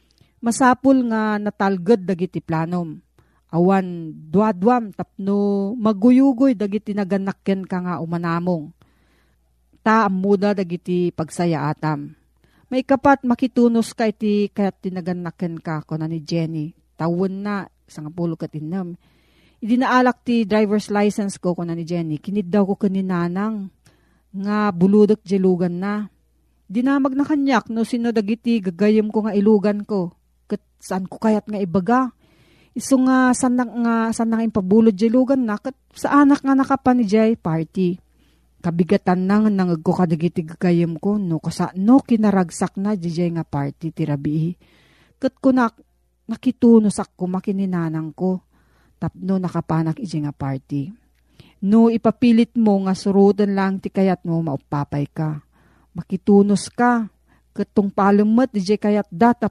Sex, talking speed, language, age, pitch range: female, 125 wpm, Filipino, 40-59, 175-225 Hz